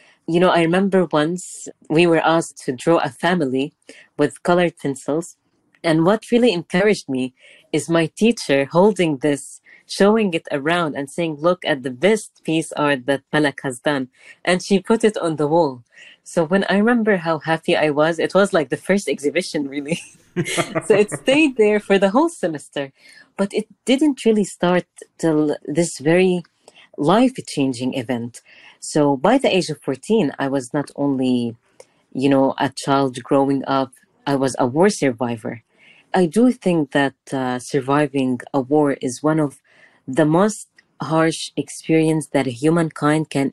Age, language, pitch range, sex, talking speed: 20-39, English, 140-180 Hz, female, 165 wpm